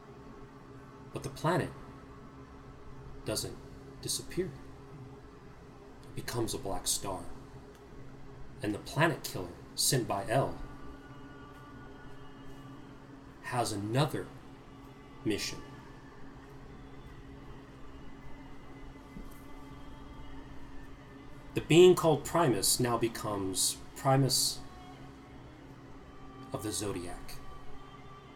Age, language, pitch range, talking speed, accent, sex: 30-49, English, 120-140 Hz, 65 wpm, American, male